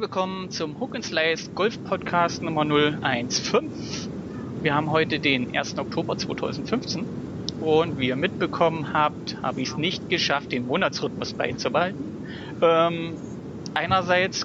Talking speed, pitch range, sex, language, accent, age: 130 wpm, 140-175 Hz, male, German, German, 40-59